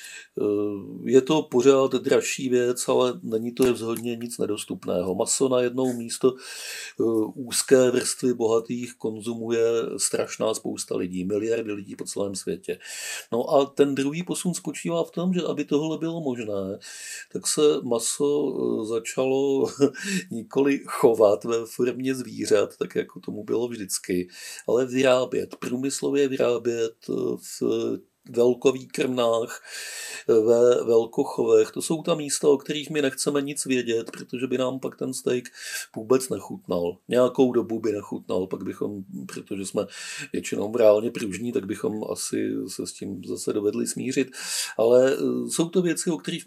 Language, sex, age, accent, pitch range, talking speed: Czech, male, 50-69, native, 115-155 Hz, 140 wpm